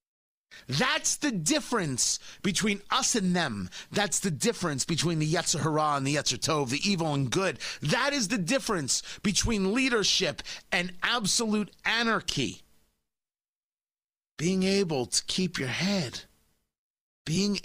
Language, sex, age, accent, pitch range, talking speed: English, male, 40-59, American, 135-200 Hz, 125 wpm